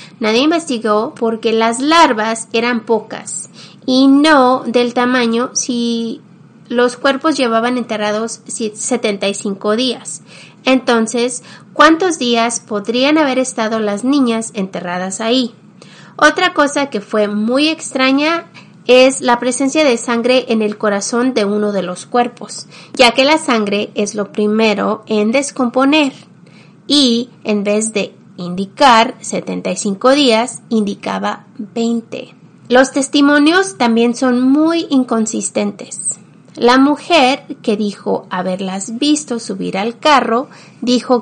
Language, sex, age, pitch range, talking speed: Spanish, female, 30-49, 210-265 Hz, 120 wpm